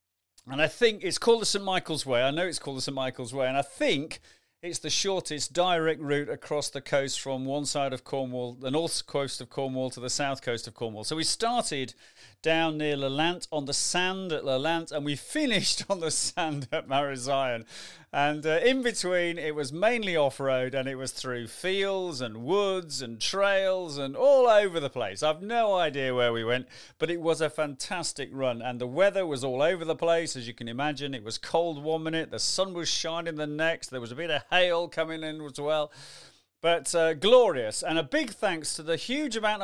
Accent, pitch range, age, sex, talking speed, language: British, 135-185 Hz, 40-59, male, 215 wpm, English